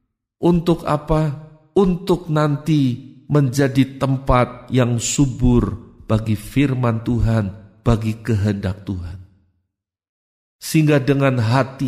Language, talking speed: Indonesian, 85 wpm